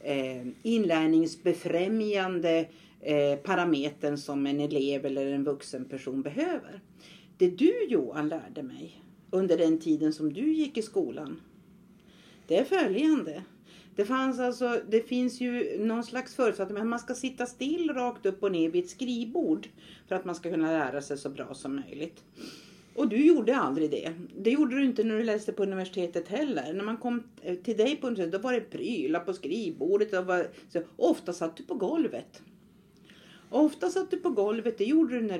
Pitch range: 160-245 Hz